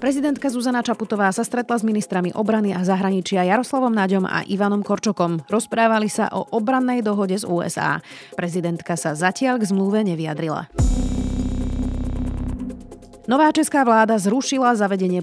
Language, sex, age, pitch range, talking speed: Slovak, female, 30-49, 175-225 Hz, 130 wpm